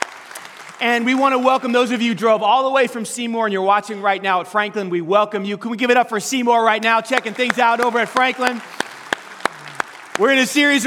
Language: English